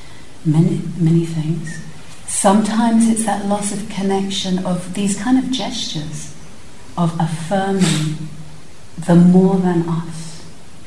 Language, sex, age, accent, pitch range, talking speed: English, female, 40-59, British, 155-175 Hz, 110 wpm